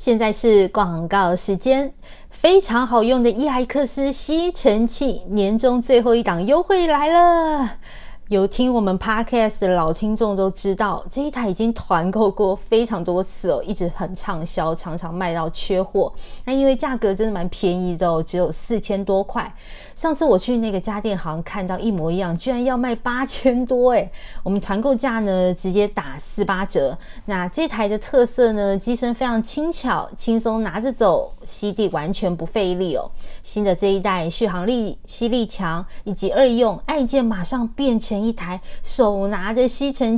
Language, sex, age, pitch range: Chinese, female, 30-49, 185-245 Hz